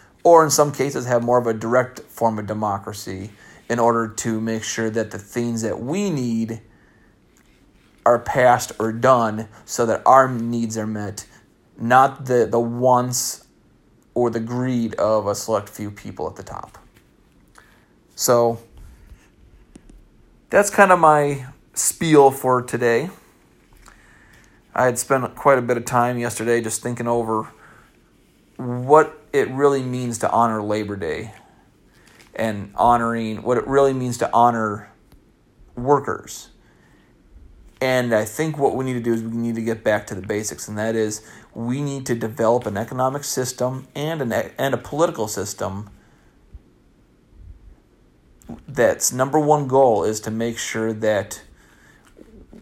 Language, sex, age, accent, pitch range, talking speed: English, male, 30-49, American, 110-125 Hz, 145 wpm